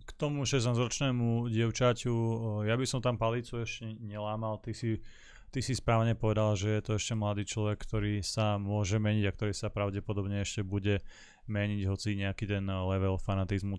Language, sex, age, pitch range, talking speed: Slovak, male, 20-39, 95-105 Hz, 170 wpm